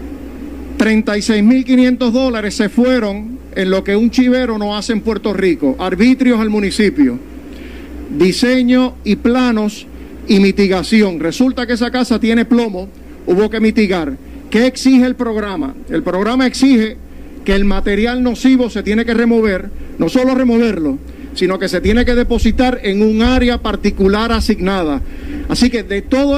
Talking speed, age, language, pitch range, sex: 145 wpm, 50-69, Spanish, 210-255 Hz, male